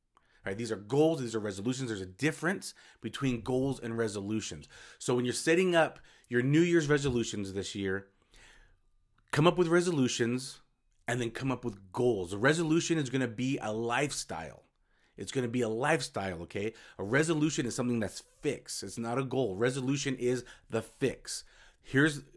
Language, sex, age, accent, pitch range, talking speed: English, male, 30-49, American, 115-150 Hz, 175 wpm